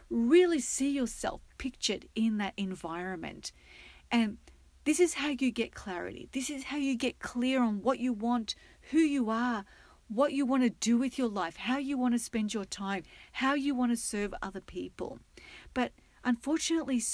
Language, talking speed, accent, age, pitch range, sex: English, 180 wpm, Australian, 40-59, 205-275 Hz, female